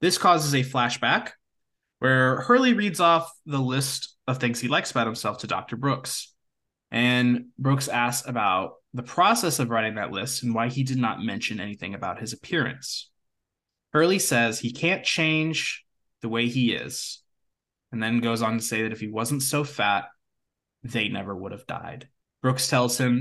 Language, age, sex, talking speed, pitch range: English, 20-39, male, 175 wpm, 110-135 Hz